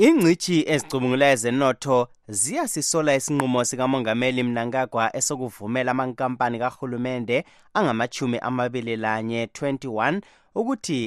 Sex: male